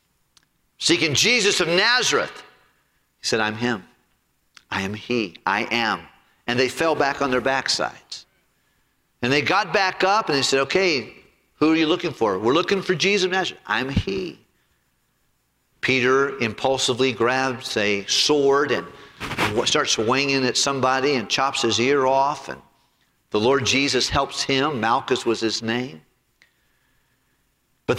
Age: 50-69